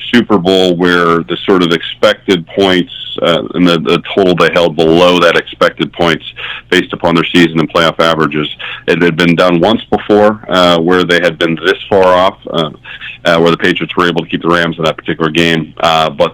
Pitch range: 80-95 Hz